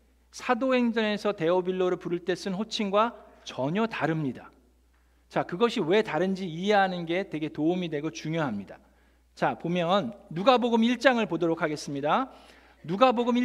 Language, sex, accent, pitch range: Korean, male, native, 165-225 Hz